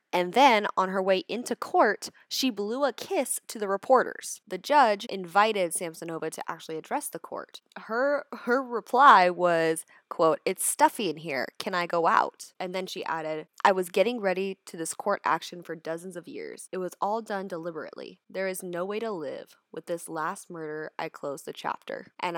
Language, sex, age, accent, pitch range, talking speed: English, female, 20-39, American, 165-240 Hz, 195 wpm